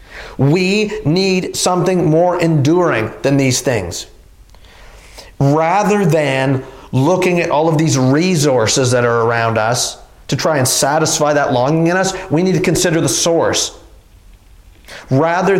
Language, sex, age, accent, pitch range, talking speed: English, male, 40-59, American, 125-165 Hz, 135 wpm